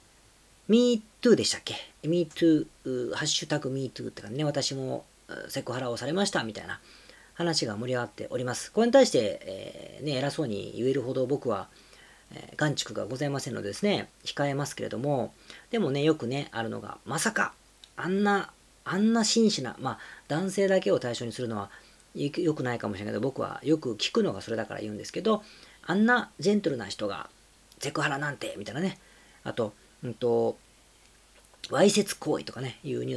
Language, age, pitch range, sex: Japanese, 40-59, 120-185 Hz, female